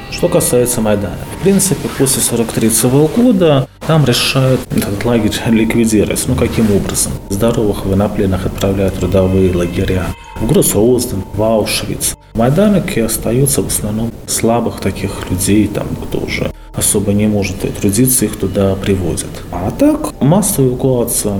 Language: Russian